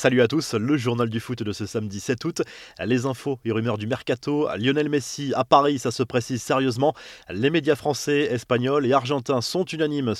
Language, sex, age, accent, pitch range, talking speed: French, male, 30-49, French, 115-150 Hz, 200 wpm